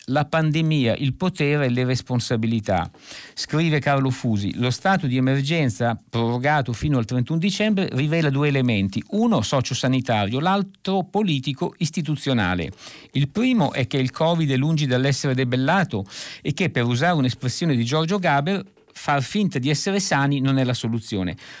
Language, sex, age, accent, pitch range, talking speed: Italian, male, 50-69, native, 125-175 Hz, 155 wpm